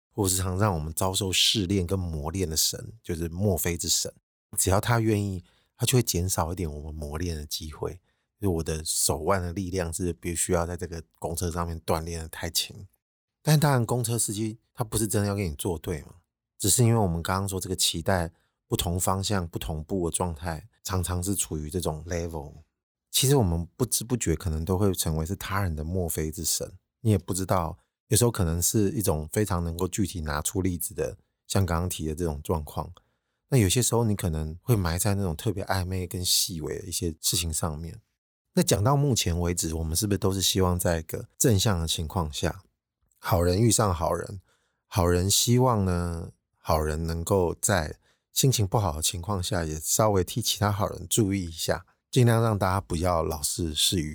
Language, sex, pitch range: Chinese, male, 85-105 Hz